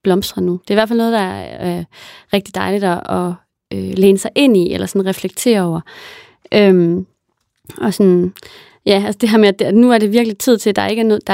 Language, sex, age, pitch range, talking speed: English, female, 30-49, 180-220 Hz, 240 wpm